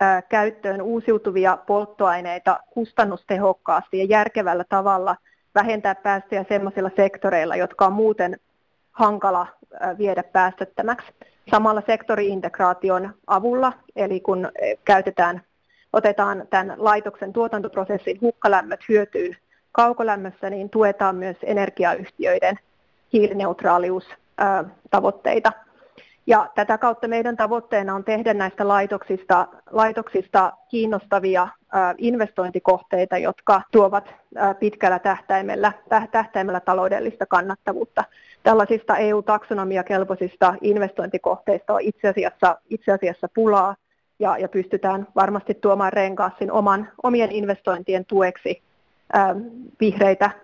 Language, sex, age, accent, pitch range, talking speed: Finnish, female, 30-49, native, 190-215 Hz, 85 wpm